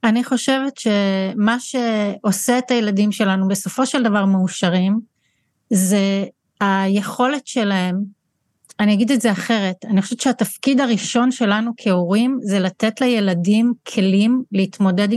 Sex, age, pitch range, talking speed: female, 30-49, 195-240 Hz, 120 wpm